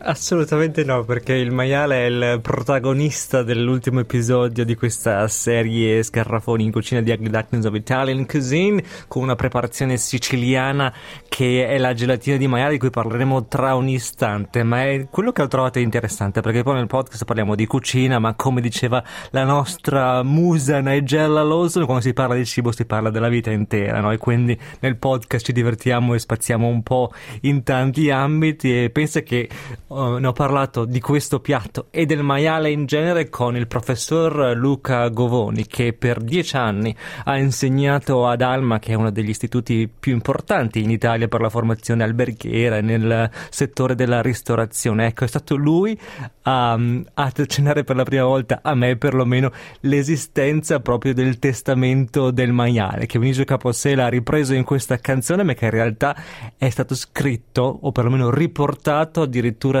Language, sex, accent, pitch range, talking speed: Italian, male, native, 120-140 Hz, 165 wpm